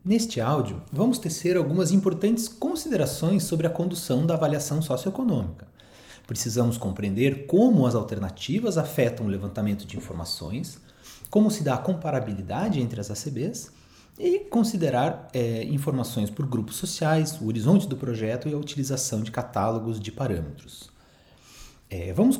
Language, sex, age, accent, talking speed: Portuguese, male, 30-49, Brazilian, 130 wpm